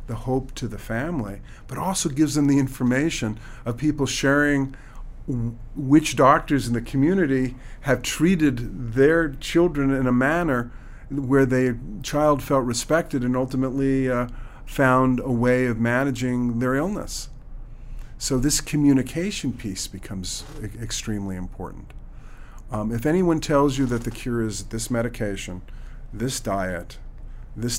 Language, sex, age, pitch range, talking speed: English, male, 50-69, 105-130 Hz, 135 wpm